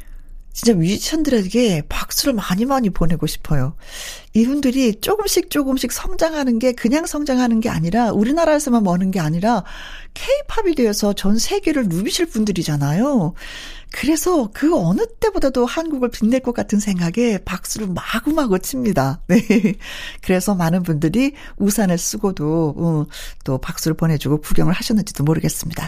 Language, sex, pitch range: Korean, female, 195-290 Hz